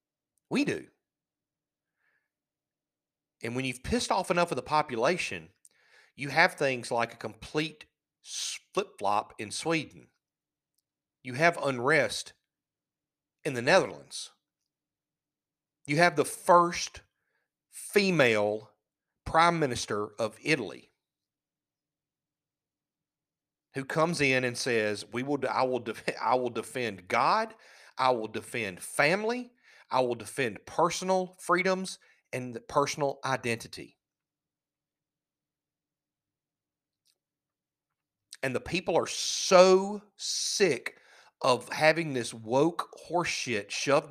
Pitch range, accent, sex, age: 130-165 Hz, American, male, 40-59